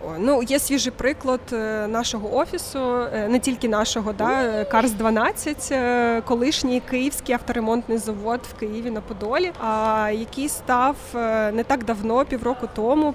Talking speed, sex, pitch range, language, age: 120 wpm, female, 220-255 Hz, Ukrainian, 20-39